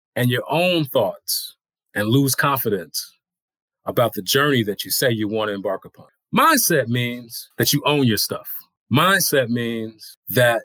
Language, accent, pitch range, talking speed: English, American, 110-145 Hz, 160 wpm